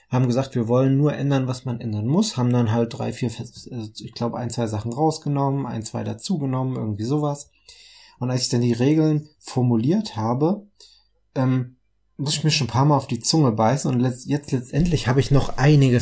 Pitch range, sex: 120-140 Hz, male